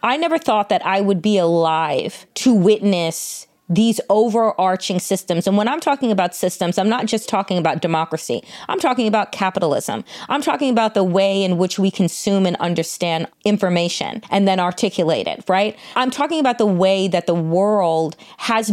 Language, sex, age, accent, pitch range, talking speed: English, female, 30-49, American, 195-250 Hz, 175 wpm